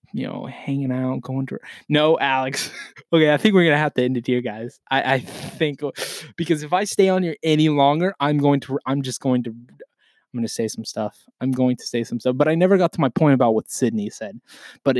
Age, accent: 20-39, American